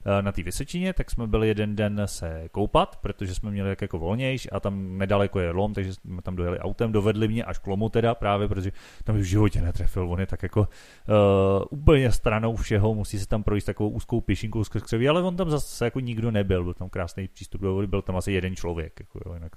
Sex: male